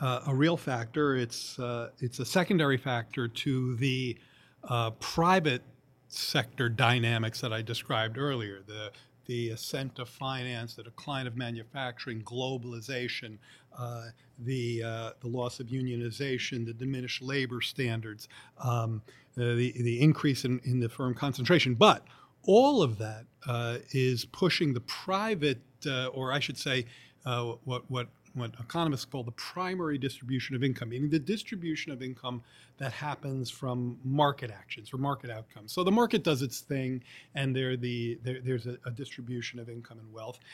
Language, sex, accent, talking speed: English, male, American, 155 wpm